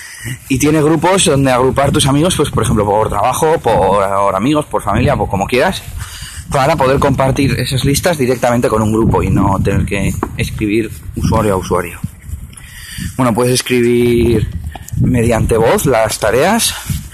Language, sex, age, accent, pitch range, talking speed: Spanish, male, 30-49, Spanish, 105-130 Hz, 150 wpm